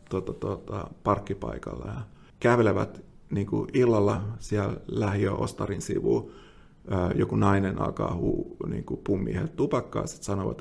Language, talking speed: Finnish, 115 wpm